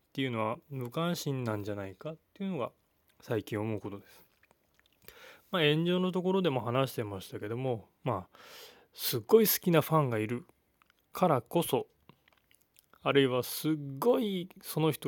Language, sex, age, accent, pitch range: Japanese, male, 20-39, native, 115-155 Hz